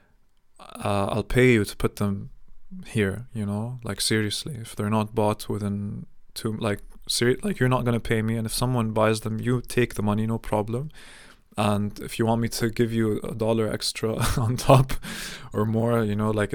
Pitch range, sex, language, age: 105-125 Hz, male, English, 20-39